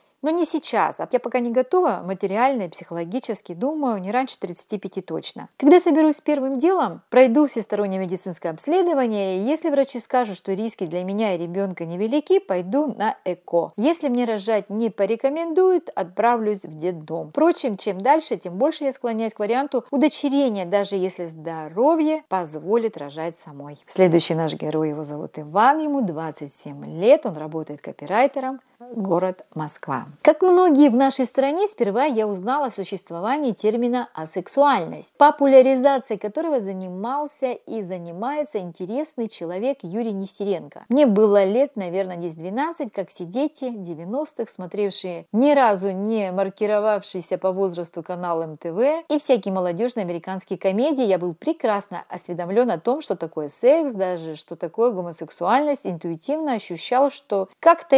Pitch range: 180-270 Hz